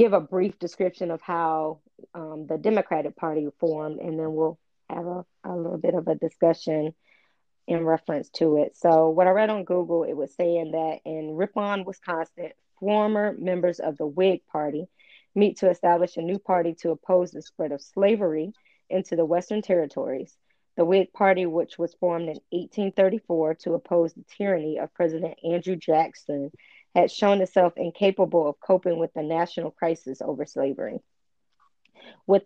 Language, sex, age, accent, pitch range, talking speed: English, female, 20-39, American, 160-185 Hz, 165 wpm